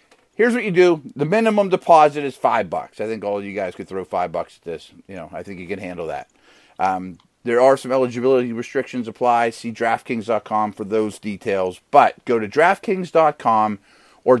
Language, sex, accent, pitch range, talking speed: English, male, American, 105-145 Hz, 195 wpm